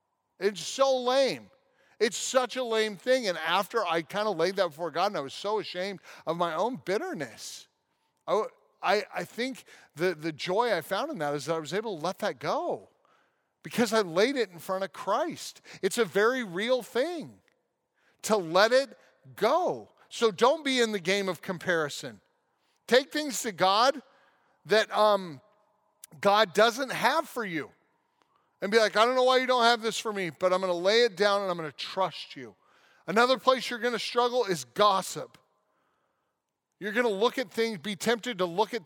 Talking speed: 190 wpm